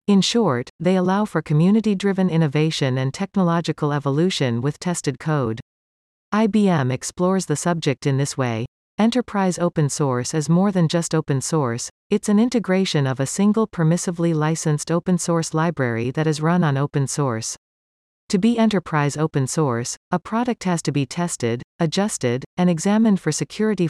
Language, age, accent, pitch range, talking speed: English, 40-59, American, 135-180 Hz, 155 wpm